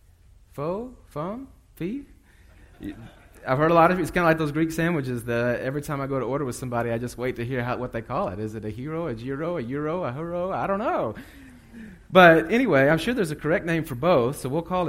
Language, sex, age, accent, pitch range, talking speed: English, male, 30-49, American, 120-160 Hz, 240 wpm